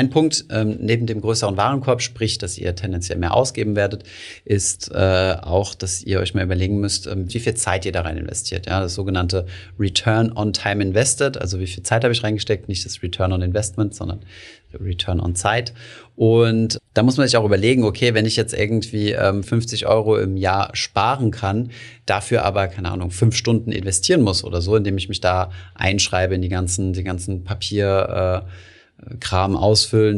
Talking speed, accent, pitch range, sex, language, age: 185 wpm, German, 90-110 Hz, male, German, 30-49